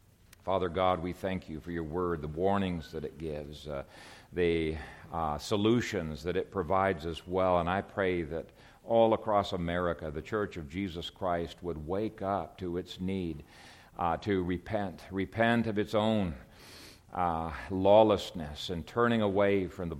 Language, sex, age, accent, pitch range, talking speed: English, male, 50-69, American, 85-100 Hz, 160 wpm